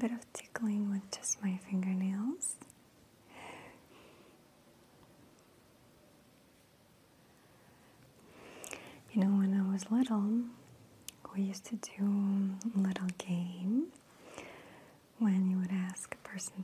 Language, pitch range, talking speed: English, 190-210 Hz, 90 wpm